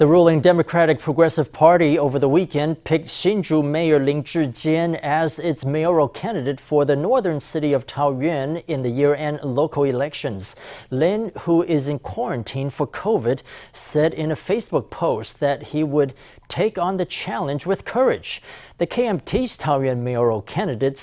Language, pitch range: English, 135-160 Hz